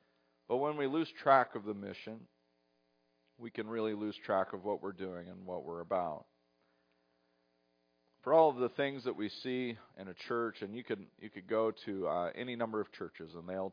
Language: English